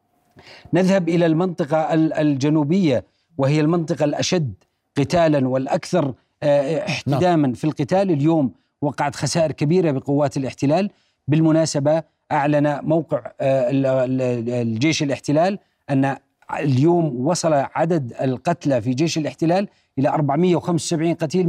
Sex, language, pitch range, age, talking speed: male, Arabic, 145-175 Hz, 40-59, 95 wpm